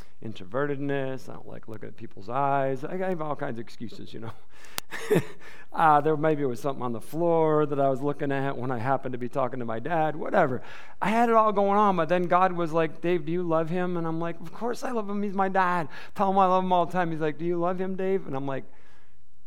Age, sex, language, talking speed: 40-59, male, English, 260 wpm